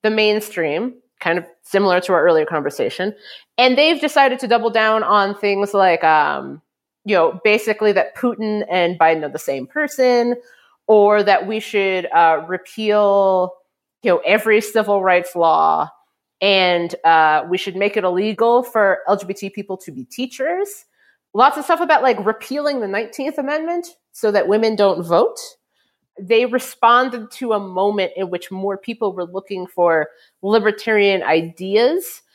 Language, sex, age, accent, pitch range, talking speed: English, female, 30-49, American, 190-250 Hz, 155 wpm